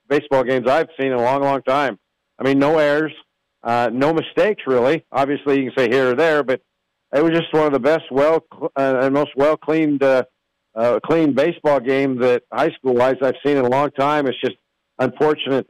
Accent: American